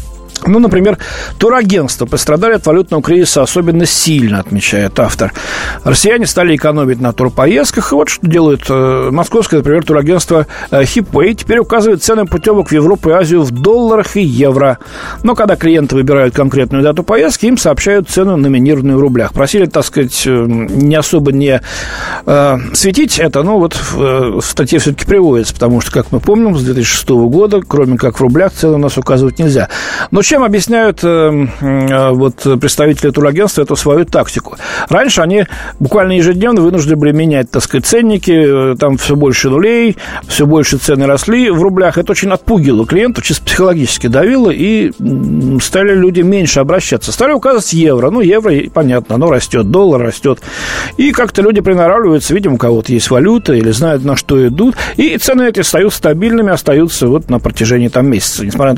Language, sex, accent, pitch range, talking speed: Russian, male, native, 135-190 Hz, 165 wpm